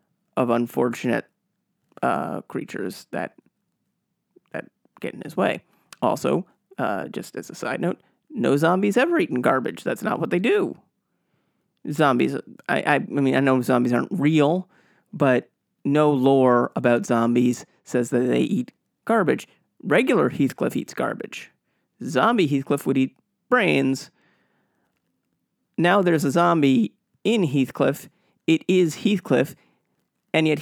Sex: male